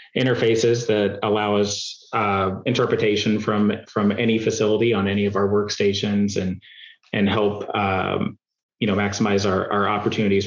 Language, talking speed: English, 145 wpm